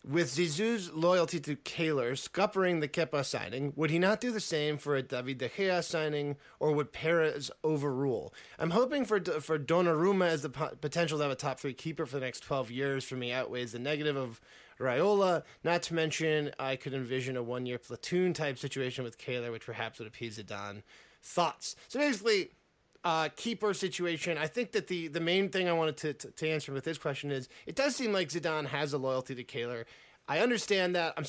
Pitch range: 140-180 Hz